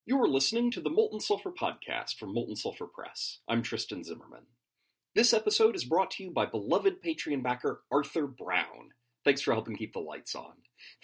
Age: 30-49